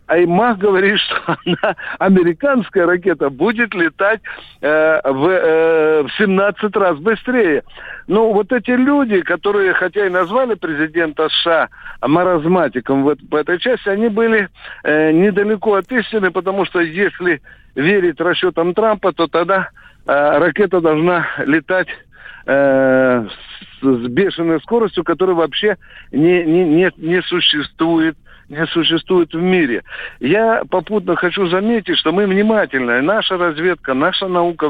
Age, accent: 60-79, native